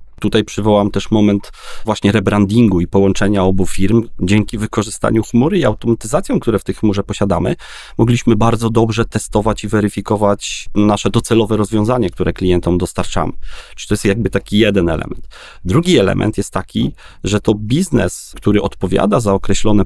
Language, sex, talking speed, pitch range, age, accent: Polish, male, 150 wpm, 95-115 Hz, 30-49, native